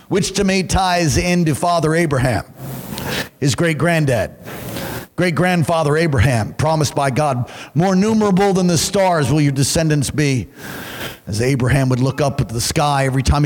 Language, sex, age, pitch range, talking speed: English, male, 50-69, 120-155 Hz, 145 wpm